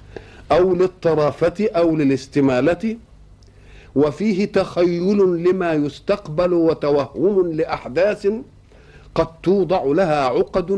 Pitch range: 160-195 Hz